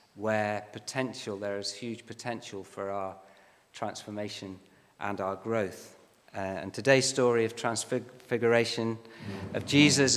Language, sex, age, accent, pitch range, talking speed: English, male, 40-59, British, 105-125 Hz, 120 wpm